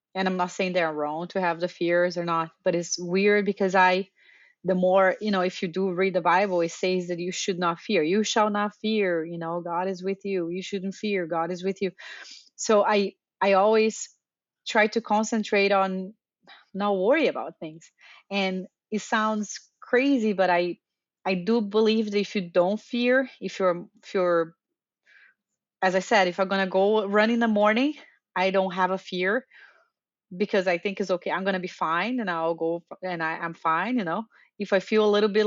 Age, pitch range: 30-49, 185-215 Hz